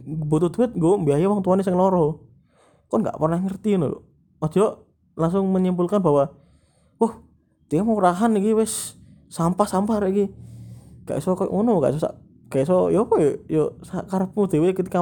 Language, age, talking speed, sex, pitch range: Indonesian, 20-39, 115 wpm, male, 140-190 Hz